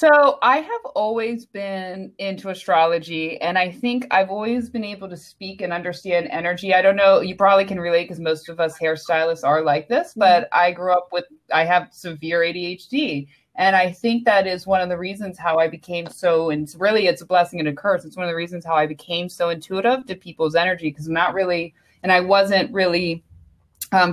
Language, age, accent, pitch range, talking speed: English, 20-39, American, 165-195 Hz, 215 wpm